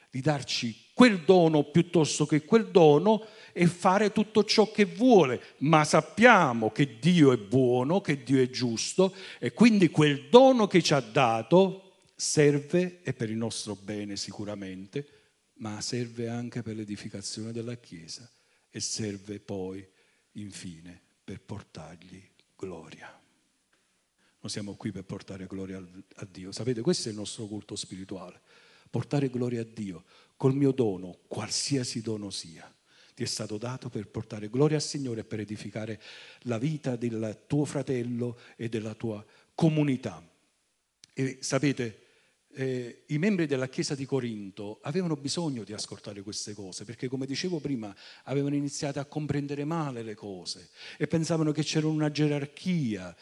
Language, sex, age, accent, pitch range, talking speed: Italian, male, 50-69, native, 110-155 Hz, 150 wpm